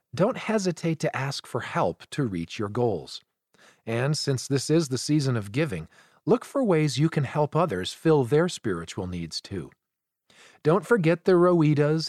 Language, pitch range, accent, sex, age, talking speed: English, 125-170 Hz, American, male, 40-59, 170 wpm